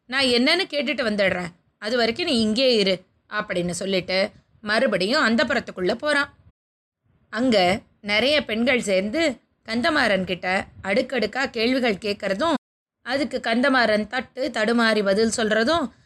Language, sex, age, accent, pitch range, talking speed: Tamil, female, 20-39, native, 200-270 Hz, 105 wpm